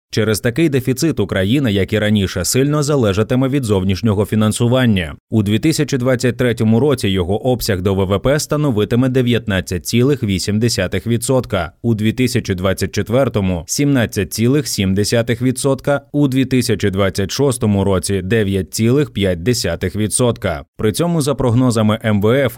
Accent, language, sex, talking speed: native, Ukrainian, male, 95 wpm